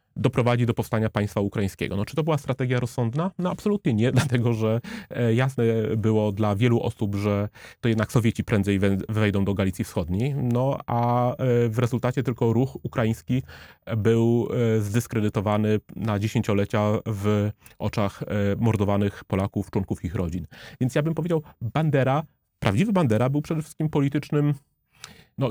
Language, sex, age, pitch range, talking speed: Polish, male, 30-49, 105-130 Hz, 140 wpm